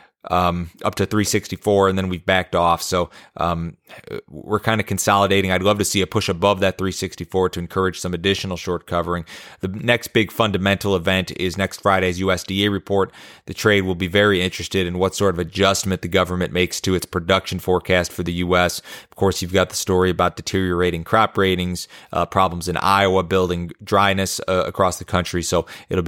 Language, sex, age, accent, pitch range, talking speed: English, male, 30-49, American, 90-100 Hz, 190 wpm